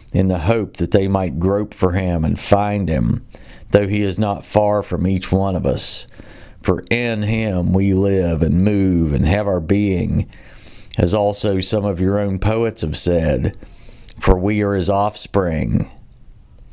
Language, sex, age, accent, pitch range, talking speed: English, male, 40-59, American, 90-105 Hz, 170 wpm